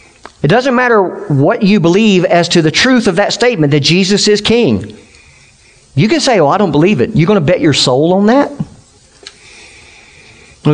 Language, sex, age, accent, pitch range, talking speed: English, male, 50-69, American, 125-175 Hz, 195 wpm